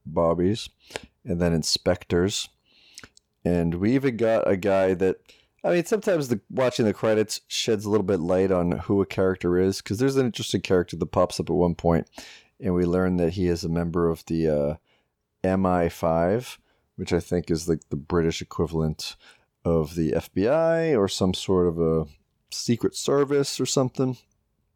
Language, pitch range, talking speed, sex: English, 85-110 Hz, 170 wpm, male